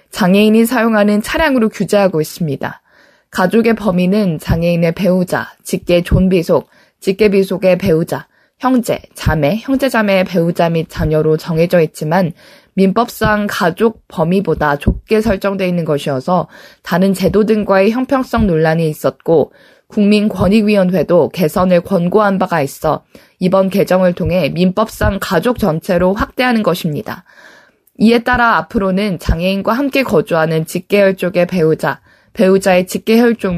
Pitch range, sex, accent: 175-220 Hz, female, native